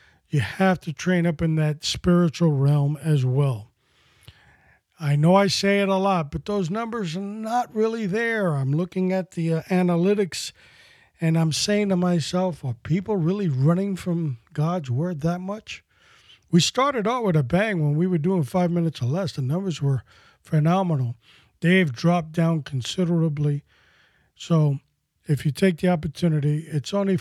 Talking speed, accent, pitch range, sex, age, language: 165 wpm, American, 140-185 Hz, male, 50-69, English